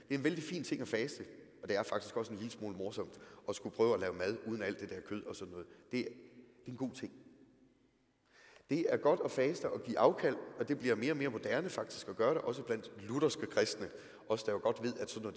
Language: Danish